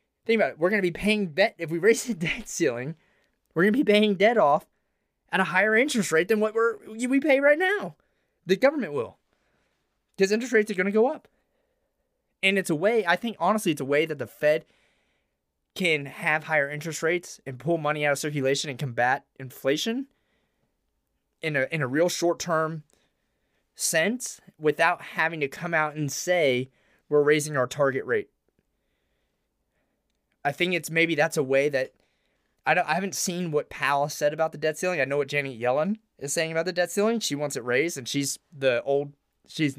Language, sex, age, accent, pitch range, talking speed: English, male, 20-39, American, 140-190 Hz, 200 wpm